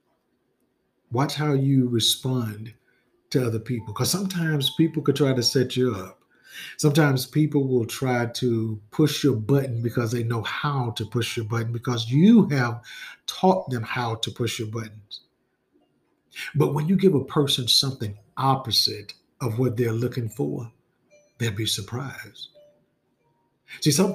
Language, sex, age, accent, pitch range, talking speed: English, male, 50-69, American, 115-150 Hz, 150 wpm